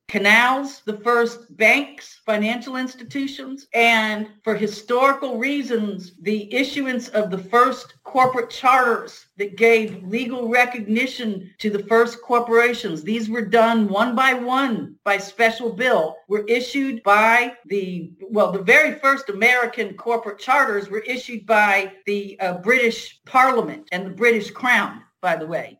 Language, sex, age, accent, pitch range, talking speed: English, female, 50-69, American, 200-245 Hz, 135 wpm